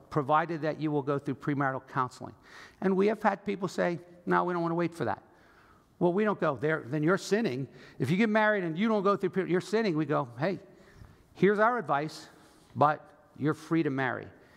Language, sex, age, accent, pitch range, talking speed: English, male, 50-69, American, 140-190 Hz, 210 wpm